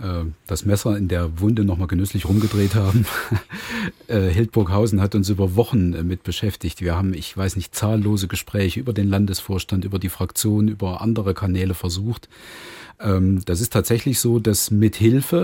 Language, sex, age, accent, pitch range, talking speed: German, male, 40-59, German, 100-115 Hz, 160 wpm